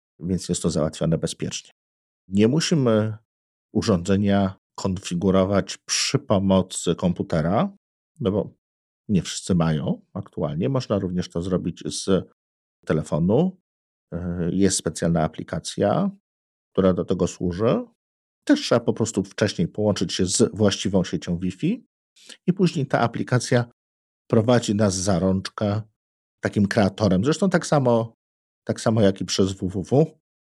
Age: 50-69